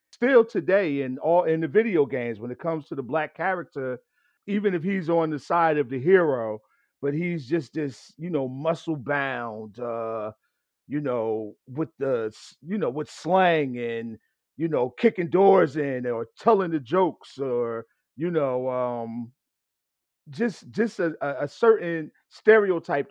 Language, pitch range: English, 135-180 Hz